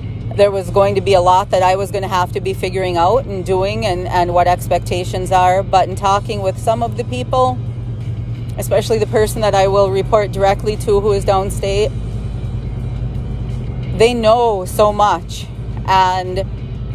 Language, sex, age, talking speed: English, female, 40-59, 170 wpm